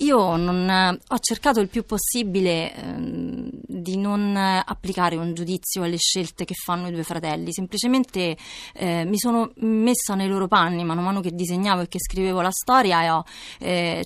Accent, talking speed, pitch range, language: native, 170 wpm, 175-220 Hz, Italian